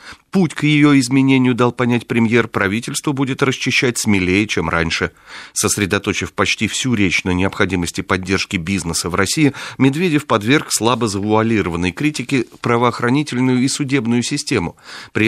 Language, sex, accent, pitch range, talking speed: Russian, male, native, 95-130 Hz, 130 wpm